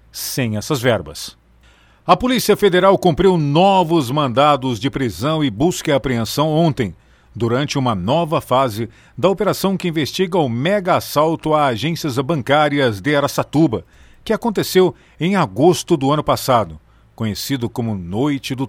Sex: male